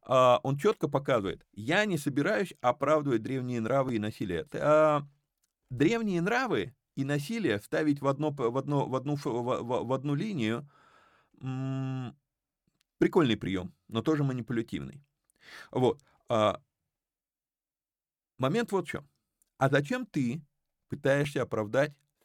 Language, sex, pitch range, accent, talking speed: Russian, male, 115-155 Hz, native, 90 wpm